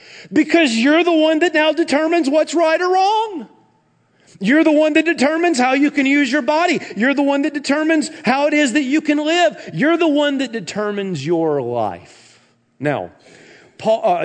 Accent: American